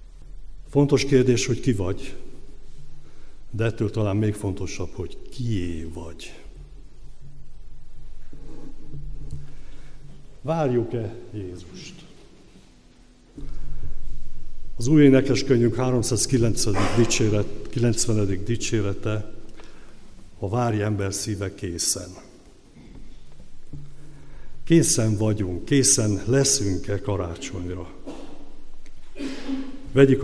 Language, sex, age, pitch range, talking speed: Hungarian, male, 60-79, 95-125 Hz, 65 wpm